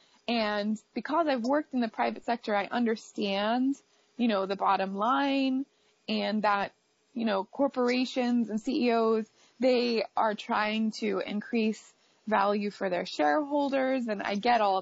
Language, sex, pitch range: English, female, 210-255 Hz